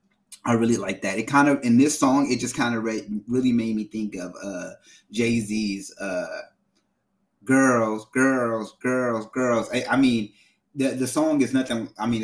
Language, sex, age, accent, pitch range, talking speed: English, male, 30-49, American, 115-165 Hz, 185 wpm